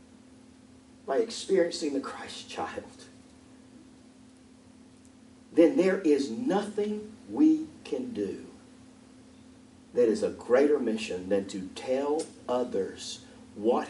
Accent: American